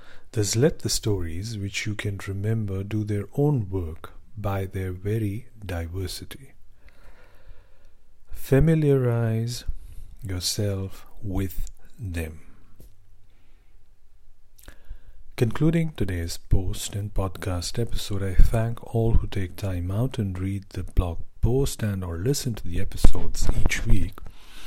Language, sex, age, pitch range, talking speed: English, male, 50-69, 90-105 Hz, 110 wpm